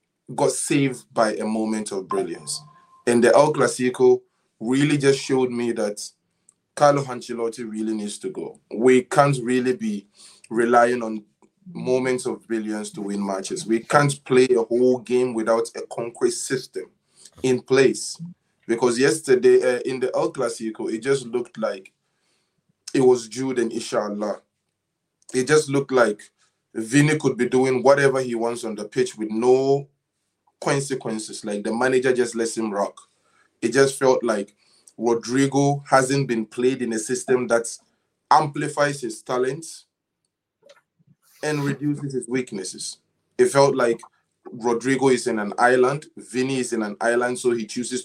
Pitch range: 115-135 Hz